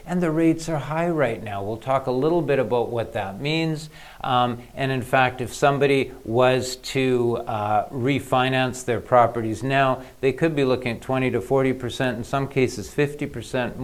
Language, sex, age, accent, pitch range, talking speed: English, male, 50-69, American, 115-145 Hz, 180 wpm